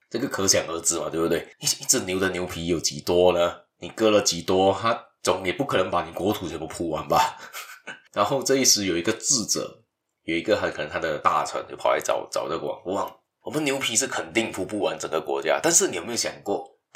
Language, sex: Chinese, male